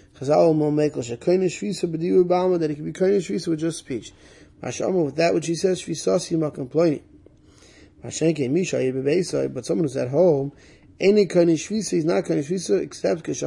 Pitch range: 140-175 Hz